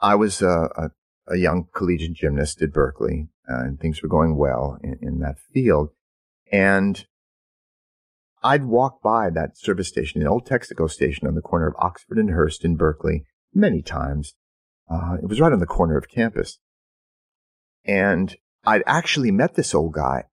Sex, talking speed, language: male, 170 wpm, English